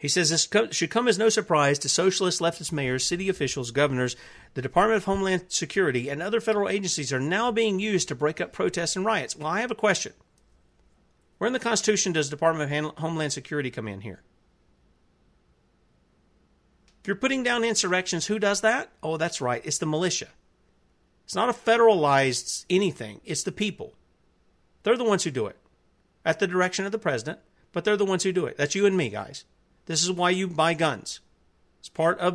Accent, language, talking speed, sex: American, English, 195 wpm, male